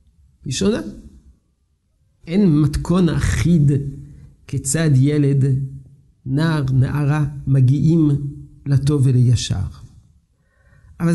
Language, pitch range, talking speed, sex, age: Hebrew, 110-175 Hz, 70 wpm, male, 50-69